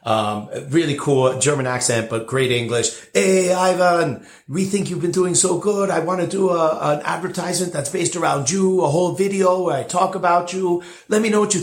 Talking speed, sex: 210 wpm, male